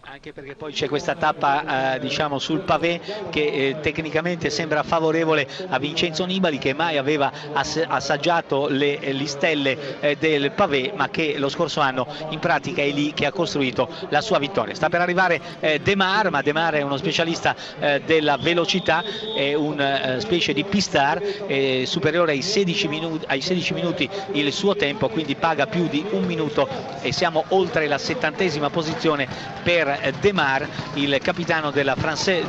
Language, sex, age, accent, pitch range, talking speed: Italian, male, 50-69, native, 145-185 Hz, 175 wpm